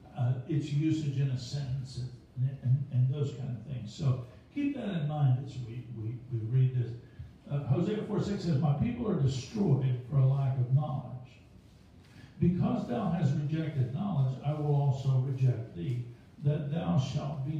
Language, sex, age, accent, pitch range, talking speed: English, male, 60-79, American, 125-145 Hz, 175 wpm